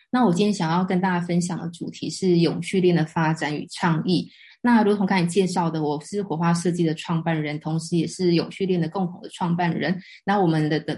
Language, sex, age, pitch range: Chinese, female, 20-39, 165-190 Hz